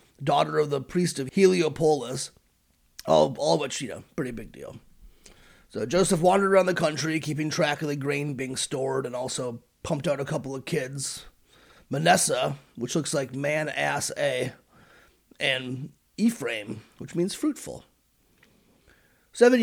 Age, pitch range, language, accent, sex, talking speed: 30-49, 130-170 Hz, English, American, male, 145 wpm